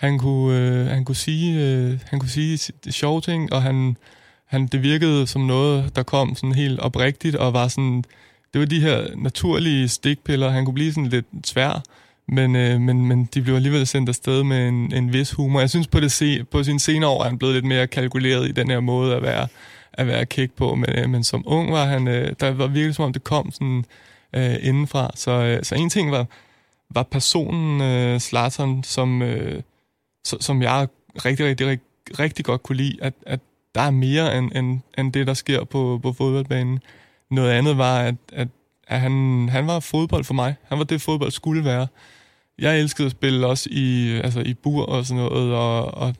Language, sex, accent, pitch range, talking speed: Danish, male, native, 125-145 Hz, 210 wpm